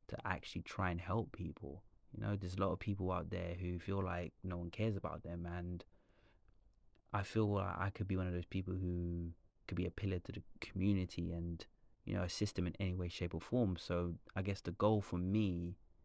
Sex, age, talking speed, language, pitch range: male, 20-39, 225 wpm, English, 85-100 Hz